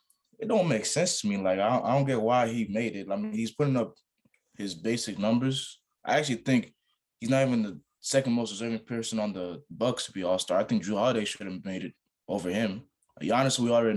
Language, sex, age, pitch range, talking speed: English, male, 20-39, 105-125 Hz, 230 wpm